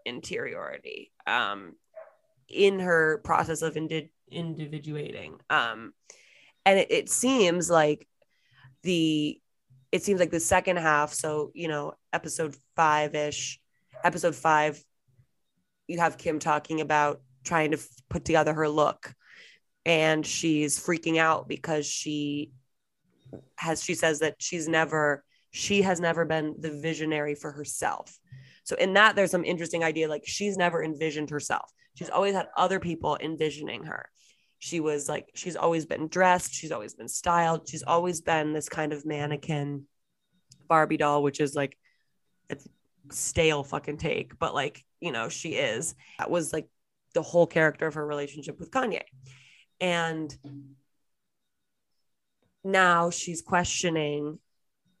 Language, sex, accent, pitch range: English, female, American, 150-170 Hz